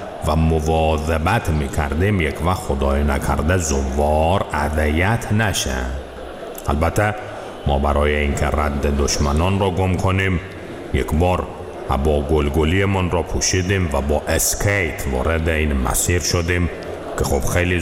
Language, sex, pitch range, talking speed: Persian, male, 70-90 Hz, 120 wpm